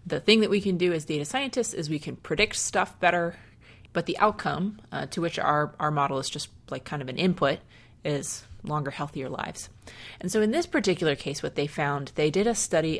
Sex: female